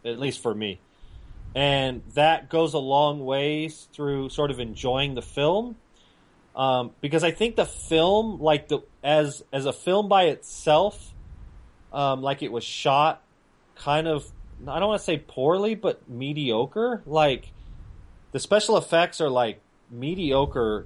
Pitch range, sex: 120-160 Hz, male